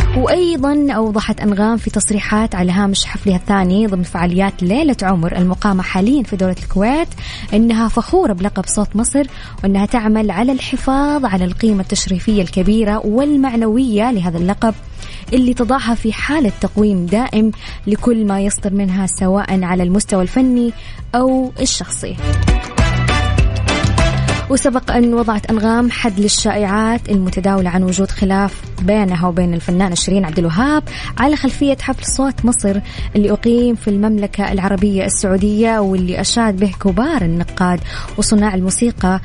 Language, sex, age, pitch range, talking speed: English, female, 20-39, 195-235 Hz, 125 wpm